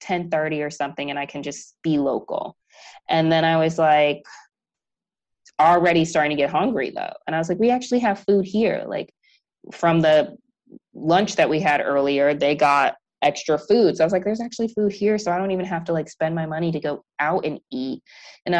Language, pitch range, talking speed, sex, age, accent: English, 145-185 Hz, 215 wpm, female, 20-39, American